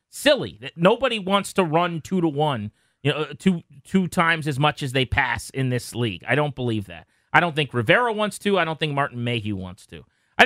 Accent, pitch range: American, 140-210 Hz